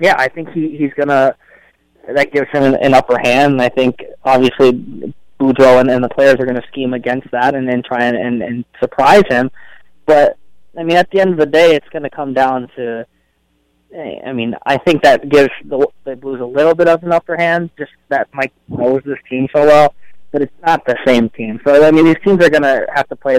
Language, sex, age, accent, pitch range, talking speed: English, male, 20-39, American, 120-145 Hz, 240 wpm